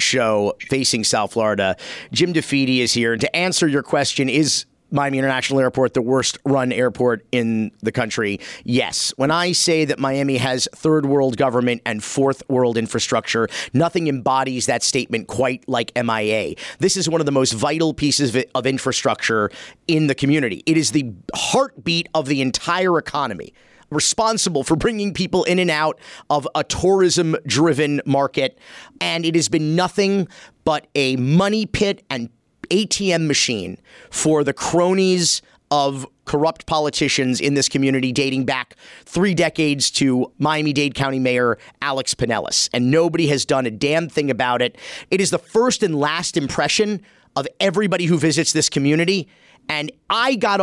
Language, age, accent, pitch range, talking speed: English, 40-59, American, 130-170 Hz, 160 wpm